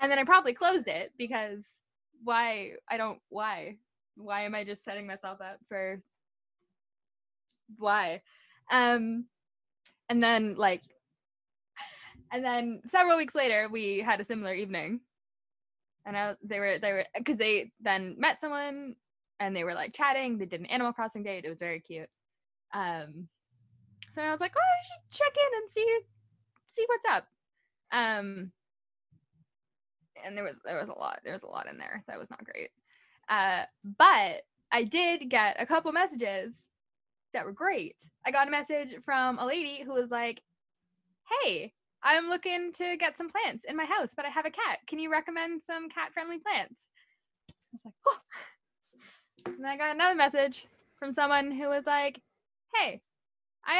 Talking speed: 165 wpm